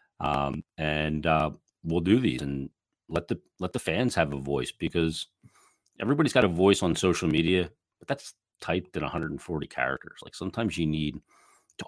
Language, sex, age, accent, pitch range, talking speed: English, male, 40-59, American, 75-90 Hz, 170 wpm